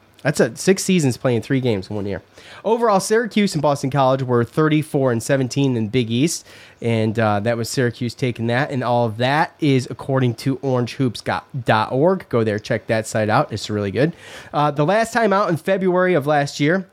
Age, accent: 30-49, American